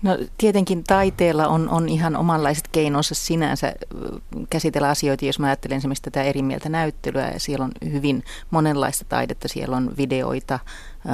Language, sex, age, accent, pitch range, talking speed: Finnish, female, 30-49, native, 125-145 Hz, 150 wpm